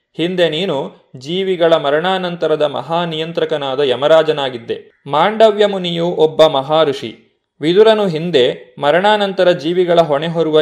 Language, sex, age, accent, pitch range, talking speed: Kannada, male, 30-49, native, 150-190 Hz, 100 wpm